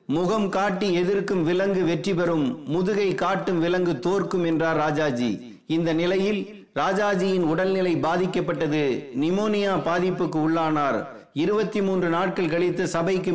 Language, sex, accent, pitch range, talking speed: Tamil, male, native, 170-200 Hz, 110 wpm